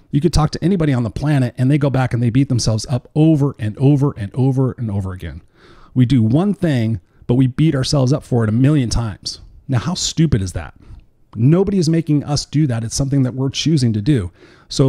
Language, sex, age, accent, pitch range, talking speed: English, male, 40-59, American, 115-145 Hz, 235 wpm